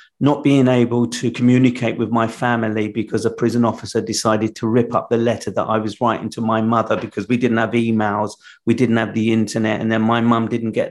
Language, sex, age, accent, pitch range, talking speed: English, male, 40-59, British, 110-130 Hz, 225 wpm